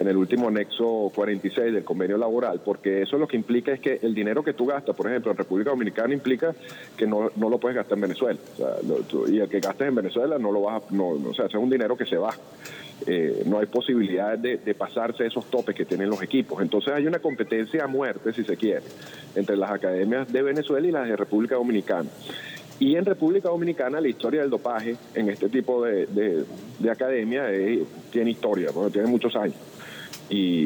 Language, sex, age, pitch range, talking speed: Spanish, male, 40-59, 110-135 Hz, 215 wpm